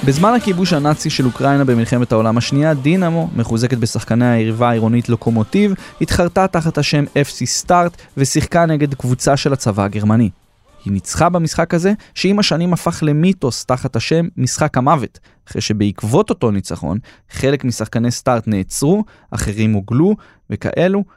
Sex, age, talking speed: male, 20-39, 135 wpm